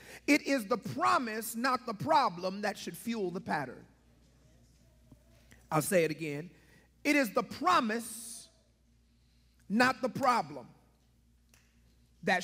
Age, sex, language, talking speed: 40-59, male, English, 115 wpm